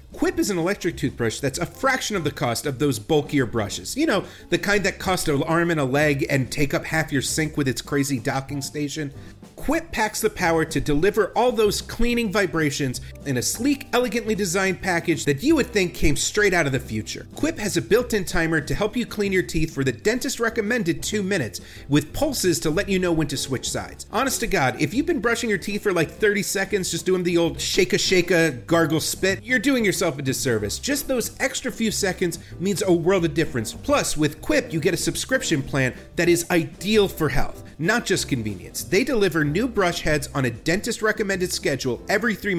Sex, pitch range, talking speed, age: male, 145-210 Hz, 215 wpm, 40-59